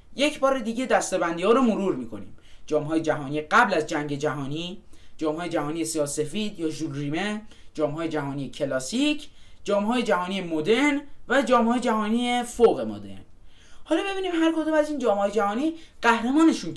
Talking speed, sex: 135 wpm, male